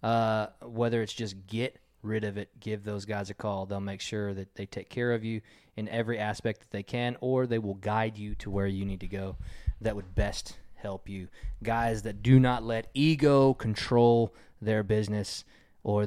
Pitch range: 105-130 Hz